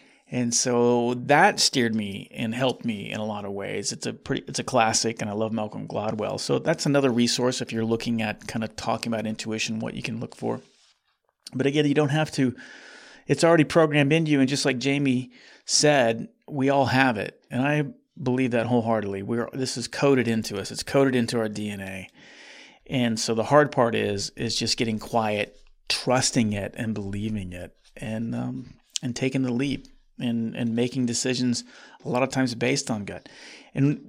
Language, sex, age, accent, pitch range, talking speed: English, male, 30-49, American, 115-135 Hz, 195 wpm